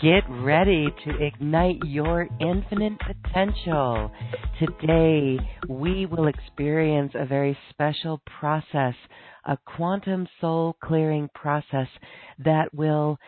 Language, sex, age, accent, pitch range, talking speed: English, female, 50-69, American, 135-165 Hz, 95 wpm